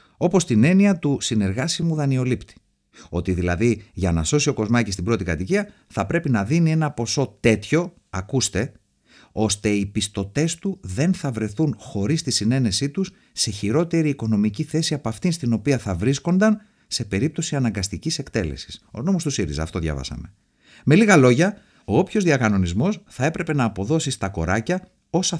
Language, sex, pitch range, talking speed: Greek, male, 95-150 Hz, 160 wpm